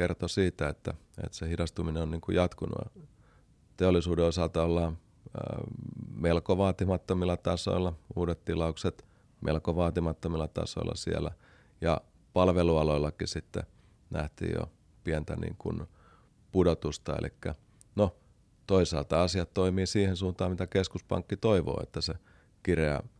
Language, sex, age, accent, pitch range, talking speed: Finnish, male, 30-49, native, 80-95 Hz, 110 wpm